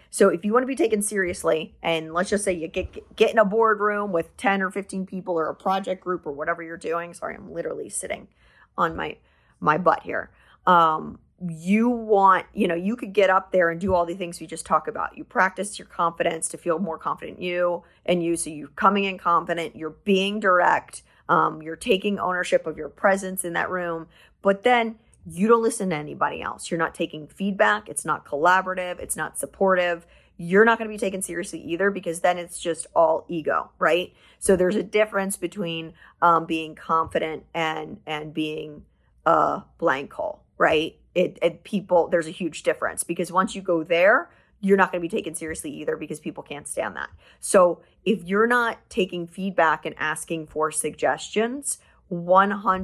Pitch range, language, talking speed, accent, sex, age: 165-200 Hz, English, 195 wpm, American, female, 30-49